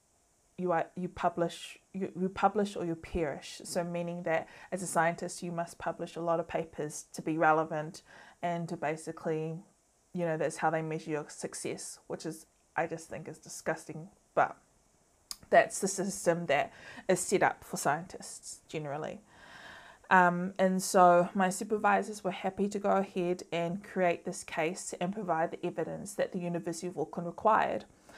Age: 20-39